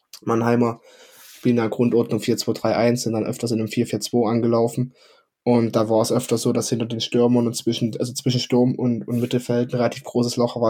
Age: 10-29